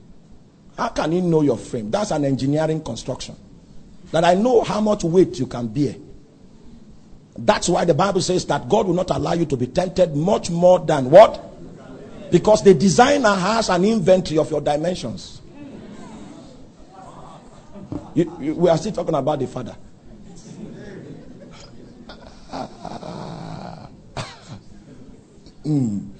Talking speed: 130 wpm